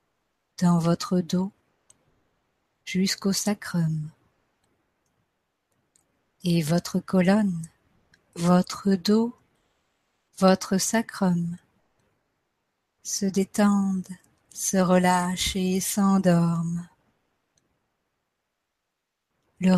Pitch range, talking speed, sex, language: 175-200 Hz, 60 wpm, female, French